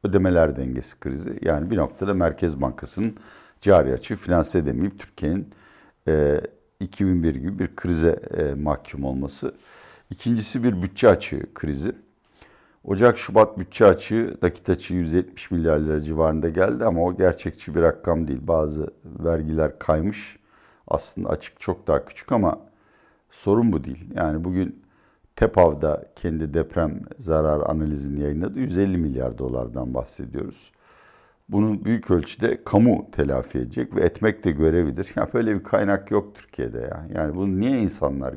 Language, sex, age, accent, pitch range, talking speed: Turkish, male, 60-79, native, 75-100 Hz, 135 wpm